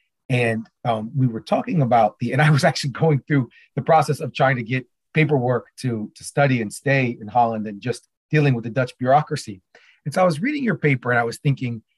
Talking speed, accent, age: 225 wpm, American, 30-49